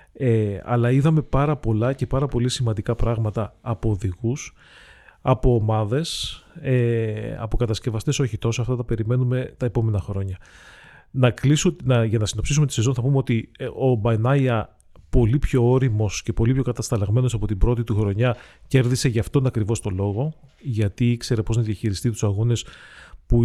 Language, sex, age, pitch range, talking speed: Greek, male, 30-49, 110-130 Hz, 150 wpm